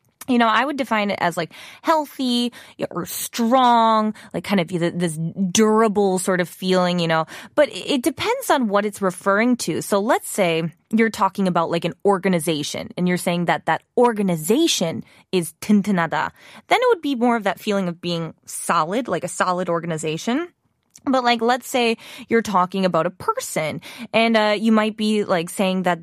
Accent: American